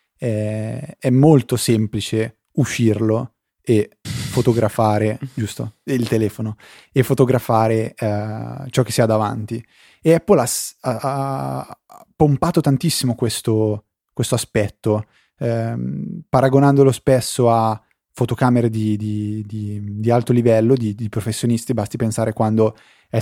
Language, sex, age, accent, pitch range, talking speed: Italian, male, 20-39, native, 110-125 Hz, 115 wpm